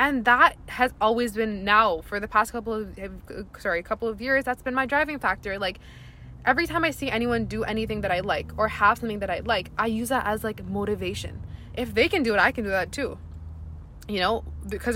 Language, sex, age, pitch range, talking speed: English, female, 20-39, 200-250 Hz, 230 wpm